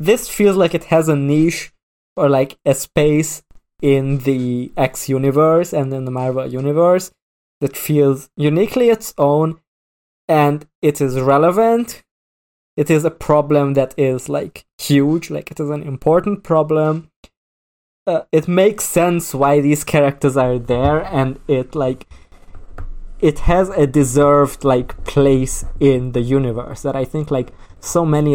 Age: 20-39